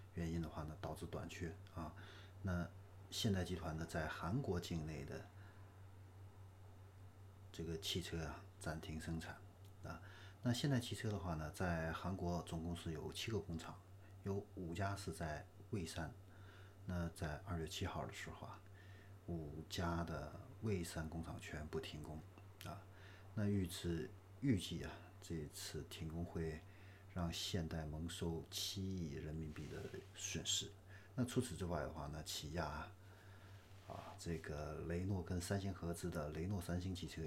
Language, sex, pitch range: Chinese, male, 85-100 Hz